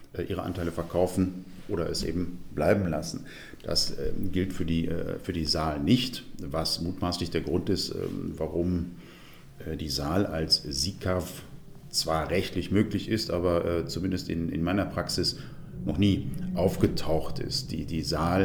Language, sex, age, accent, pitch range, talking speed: German, male, 50-69, German, 85-95 Hz, 155 wpm